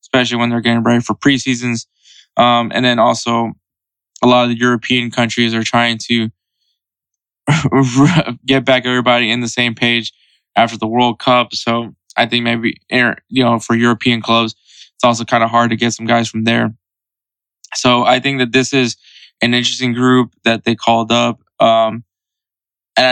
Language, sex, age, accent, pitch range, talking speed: English, male, 20-39, American, 115-125 Hz, 170 wpm